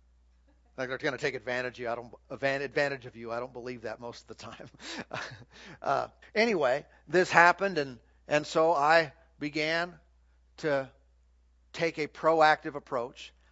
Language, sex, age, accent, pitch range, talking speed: English, male, 50-69, American, 130-175 Hz, 155 wpm